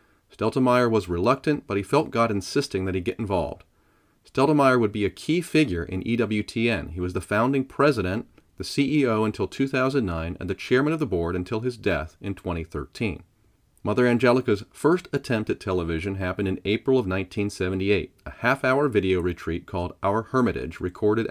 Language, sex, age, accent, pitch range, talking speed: English, male, 40-59, American, 90-125 Hz, 165 wpm